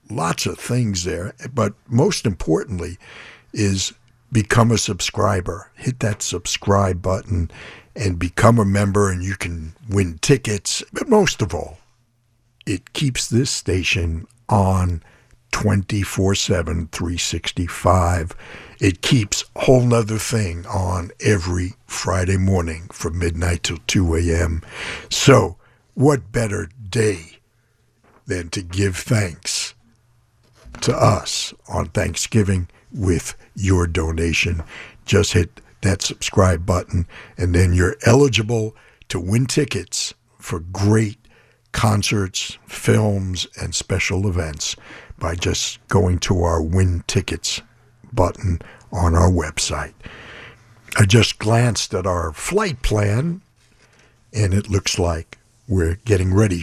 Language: English